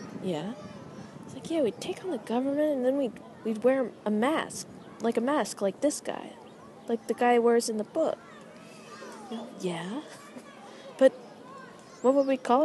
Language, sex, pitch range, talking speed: English, female, 180-245 Hz, 165 wpm